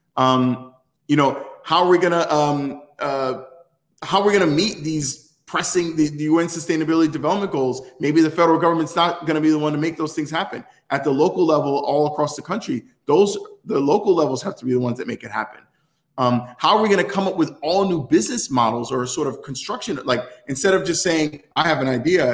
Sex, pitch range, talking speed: male, 130-165 Hz, 230 wpm